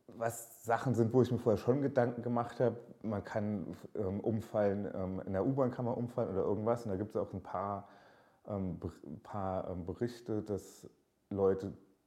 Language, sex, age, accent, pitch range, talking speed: German, male, 30-49, German, 100-120 Hz, 195 wpm